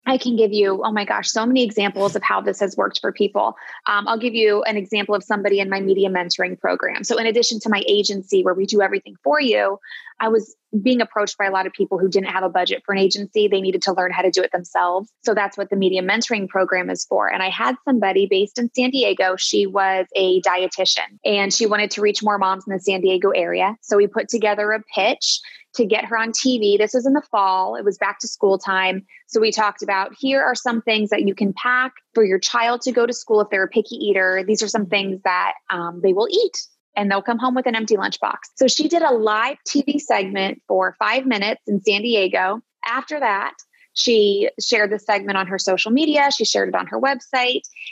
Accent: American